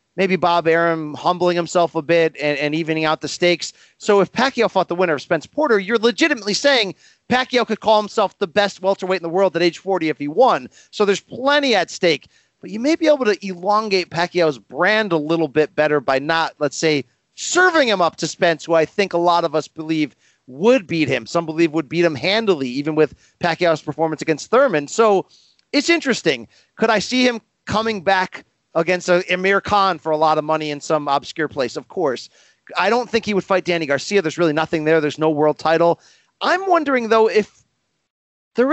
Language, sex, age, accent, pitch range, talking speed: English, male, 40-59, American, 155-210 Hz, 210 wpm